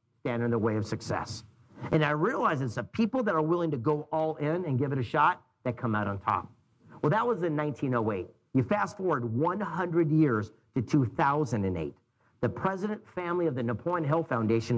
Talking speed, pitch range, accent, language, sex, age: 195 wpm, 120-165 Hz, American, English, male, 50-69